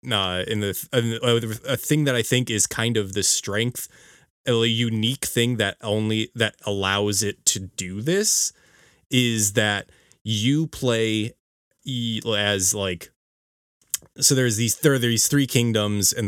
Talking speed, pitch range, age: 145 wpm, 95-115 Hz, 20-39